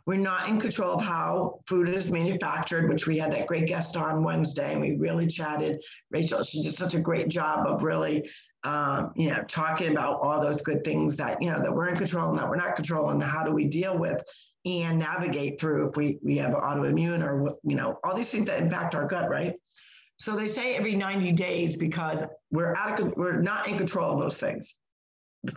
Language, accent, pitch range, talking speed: English, American, 155-185 Hz, 215 wpm